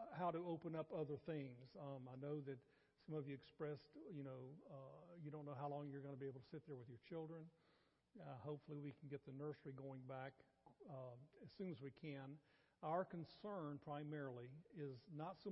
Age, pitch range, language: 50-69, 140-165 Hz, English